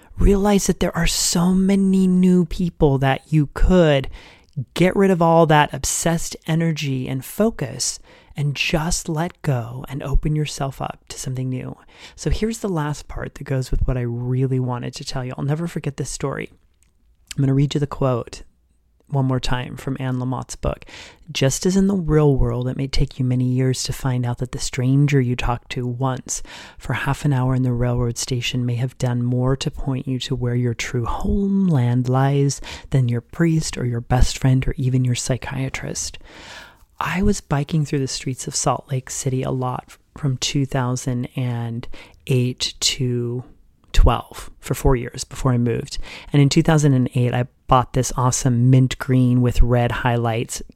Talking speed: 180 wpm